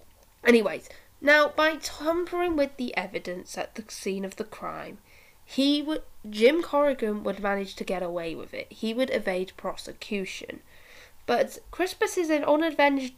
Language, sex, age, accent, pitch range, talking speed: English, female, 10-29, British, 195-290 Hz, 140 wpm